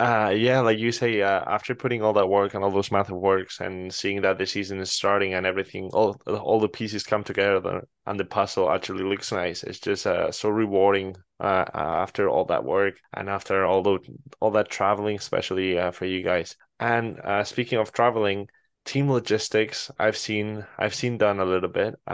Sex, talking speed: male, 205 wpm